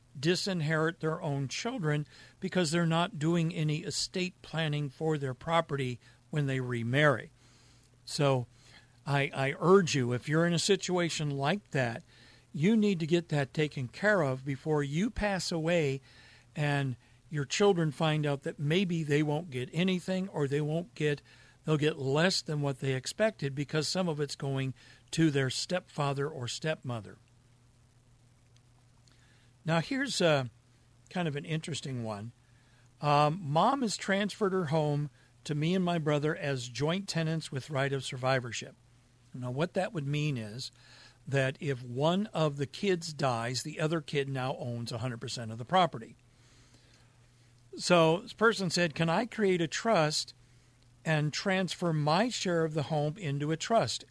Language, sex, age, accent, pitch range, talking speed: English, male, 60-79, American, 125-170 Hz, 155 wpm